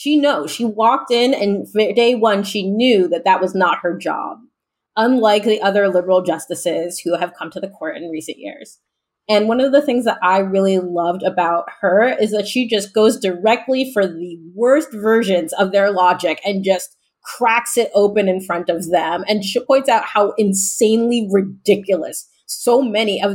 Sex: female